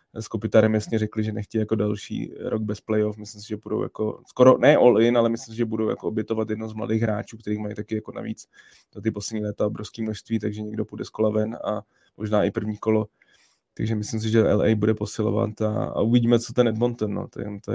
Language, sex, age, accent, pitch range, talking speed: Czech, male, 20-39, native, 105-115 Hz, 230 wpm